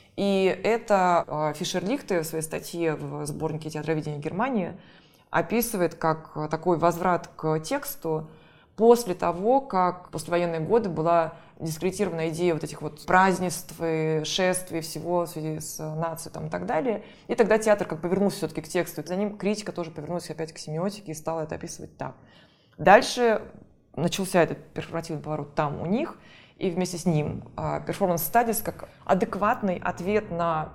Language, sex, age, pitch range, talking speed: Russian, female, 20-39, 160-190 Hz, 155 wpm